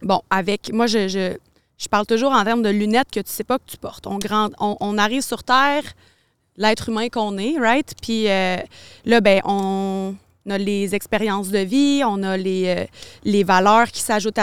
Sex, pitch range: female, 195-235 Hz